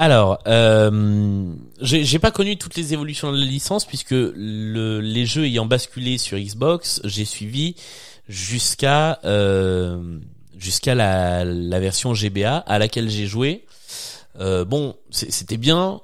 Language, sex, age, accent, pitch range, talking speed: French, male, 30-49, French, 100-135 Hz, 140 wpm